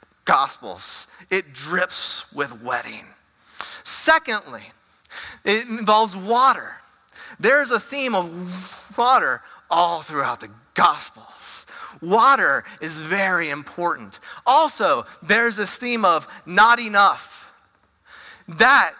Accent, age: American, 30-49